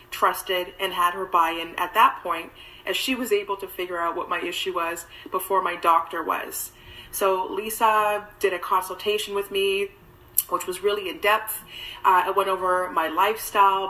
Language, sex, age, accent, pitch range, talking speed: English, female, 30-49, American, 180-210 Hz, 170 wpm